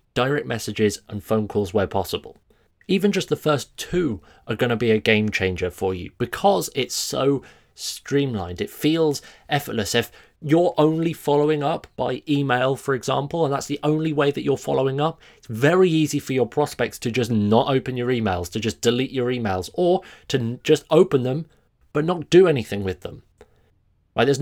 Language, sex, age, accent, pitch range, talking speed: English, male, 30-49, British, 105-145 Hz, 185 wpm